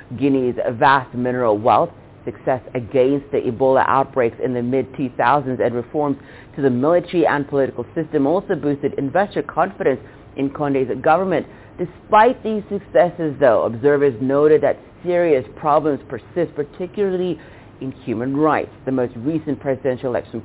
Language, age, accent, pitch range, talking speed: English, 40-59, American, 130-165 Hz, 135 wpm